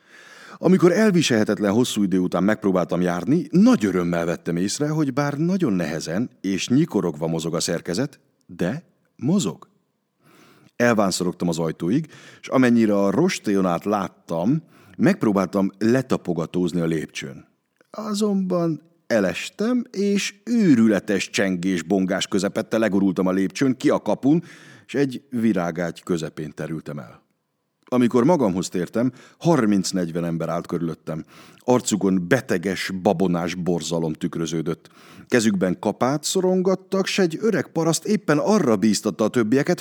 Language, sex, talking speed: Hungarian, male, 115 wpm